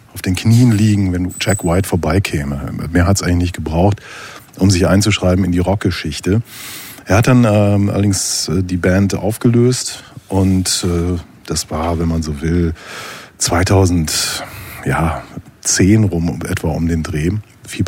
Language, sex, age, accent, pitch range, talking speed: German, male, 40-59, German, 90-110 Hz, 150 wpm